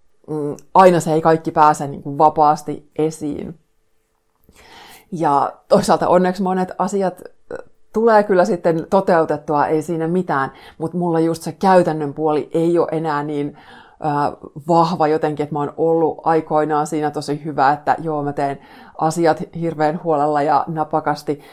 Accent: native